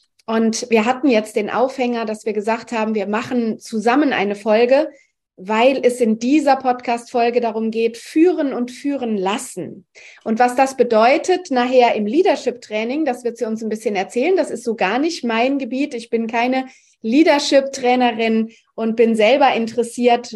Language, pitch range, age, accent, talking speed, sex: German, 215-250 Hz, 30-49, German, 160 wpm, female